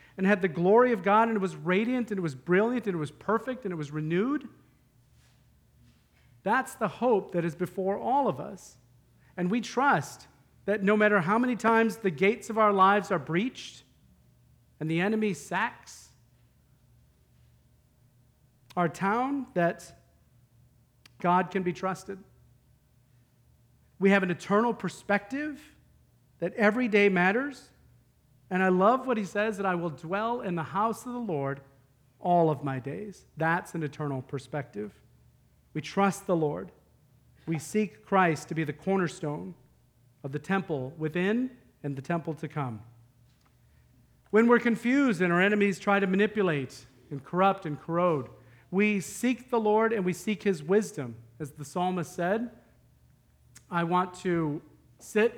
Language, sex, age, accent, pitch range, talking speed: English, male, 40-59, American, 140-210 Hz, 155 wpm